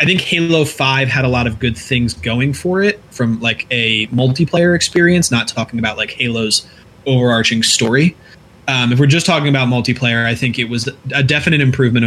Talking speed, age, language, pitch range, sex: 195 wpm, 20-39, English, 115-135 Hz, male